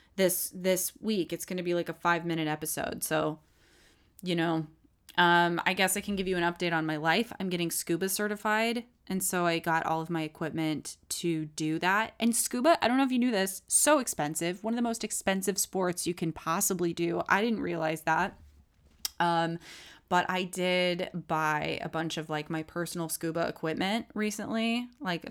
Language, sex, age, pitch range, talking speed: English, female, 20-39, 165-210 Hz, 195 wpm